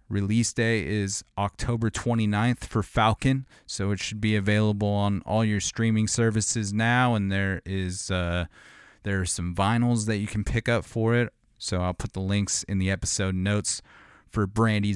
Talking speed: 175 wpm